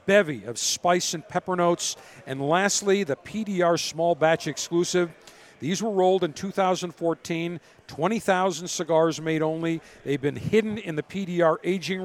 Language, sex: English, male